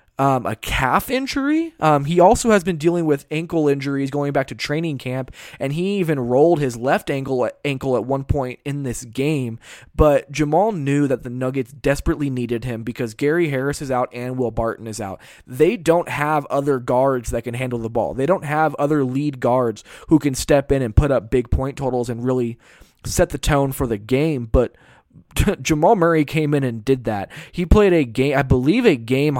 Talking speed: 205 wpm